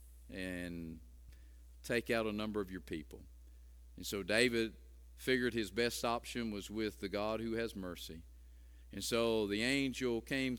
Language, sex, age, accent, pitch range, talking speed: English, male, 50-69, American, 80-120 Hz, 155 wpm